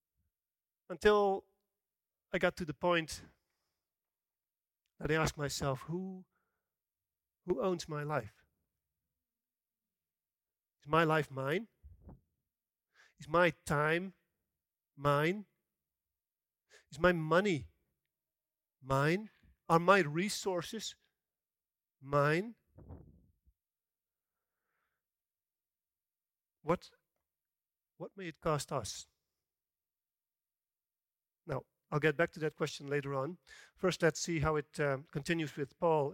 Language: English